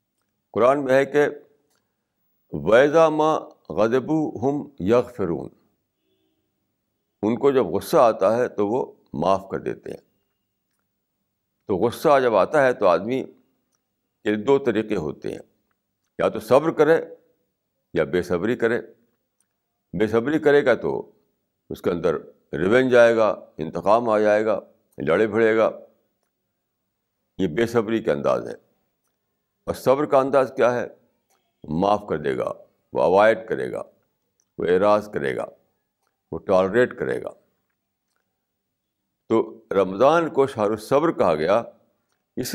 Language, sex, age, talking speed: Urdu, male, 60-79, 135 wpm